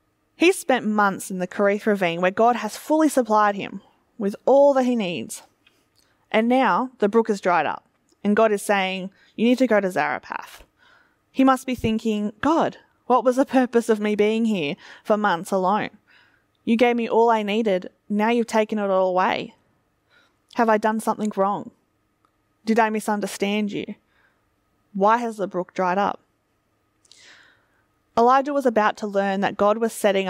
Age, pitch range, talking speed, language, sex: 20-39, 195-235 Hz, 170 wpm, English, female